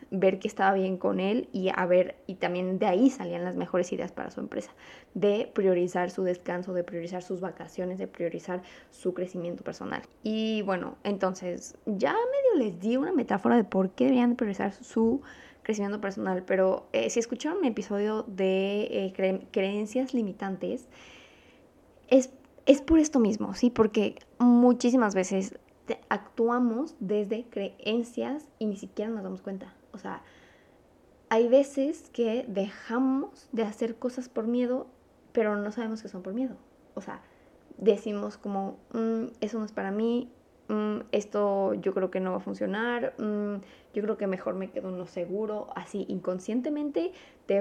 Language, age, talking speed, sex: Spanish, 20-39, 160 wpm, female